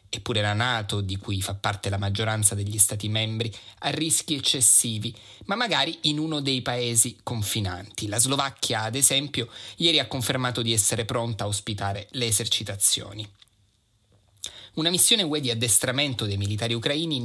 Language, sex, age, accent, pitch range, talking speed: Italian, male, 30-49, native, 105-130 Hz, 155 wpm